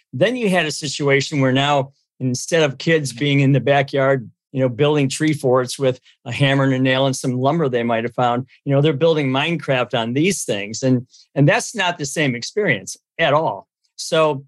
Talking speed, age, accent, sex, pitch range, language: 205 wpm, 40-59, American, male, 130-160 Hz, English